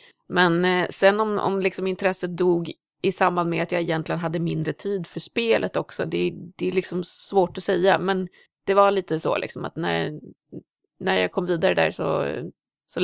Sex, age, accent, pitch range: female, 30-49, Swedish, 170-200 Hz